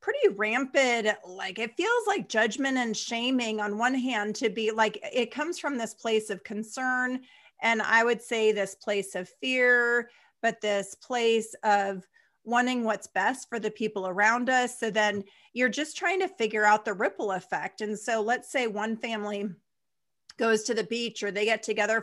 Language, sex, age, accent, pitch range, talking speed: English, female, 40-59, American, 210-250 Hz, 185 wpm